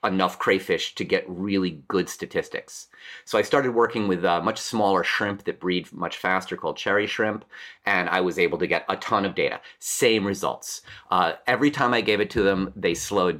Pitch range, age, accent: 95-130 Hz, 30-49, American